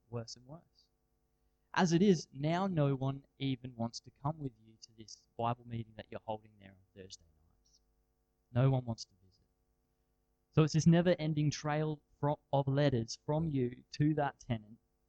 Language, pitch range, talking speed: English, 95-145 Hz, 170 wpm